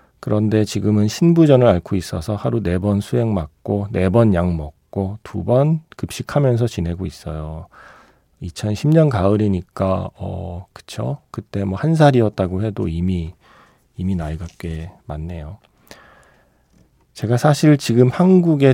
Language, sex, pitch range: Korean, male, 90-130 Hz